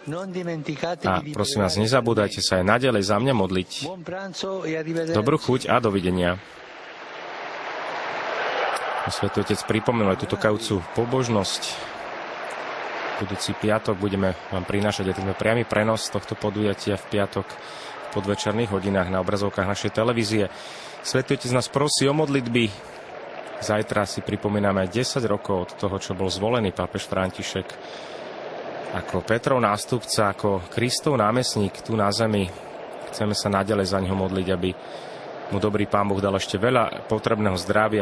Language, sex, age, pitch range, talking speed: Slovak, male, 30-49, 95-115 Hz, 130 wpm